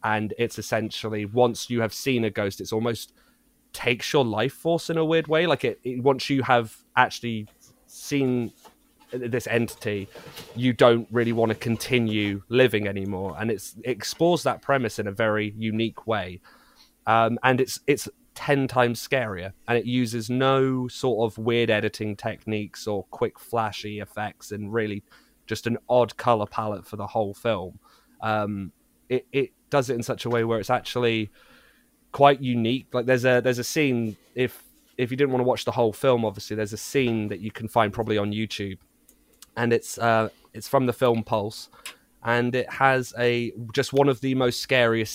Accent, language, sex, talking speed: British, English, male, 185 wpm